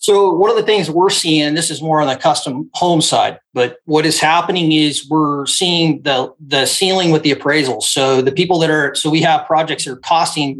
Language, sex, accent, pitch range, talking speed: English, male, American, 135-160 Hz, 230 wpm